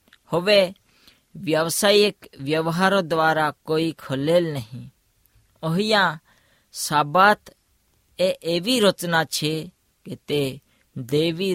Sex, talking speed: female, 60 wpm